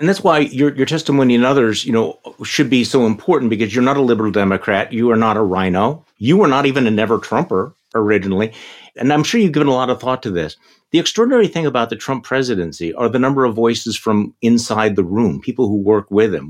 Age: 50-69